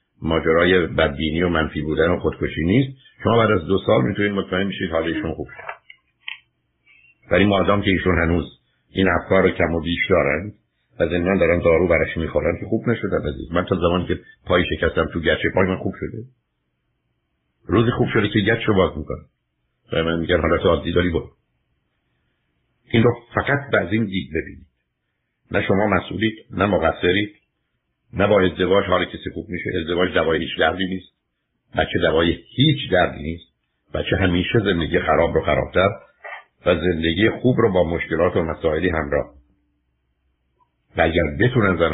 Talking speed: 165 wpm